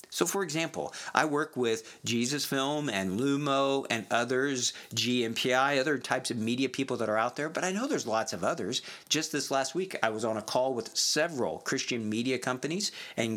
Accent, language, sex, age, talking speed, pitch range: American, English, male, 50-69, 195 wpm, 115-145 Hz